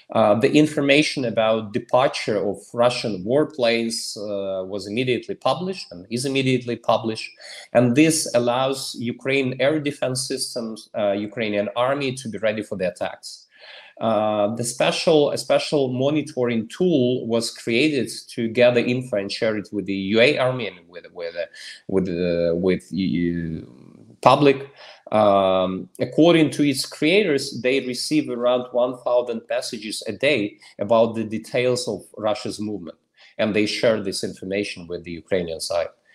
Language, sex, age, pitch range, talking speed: Swedish, male, 30-49, 105-130 Hz, 145 wpm